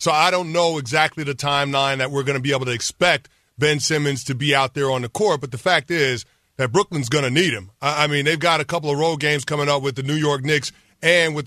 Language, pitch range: English, 140-170 Hz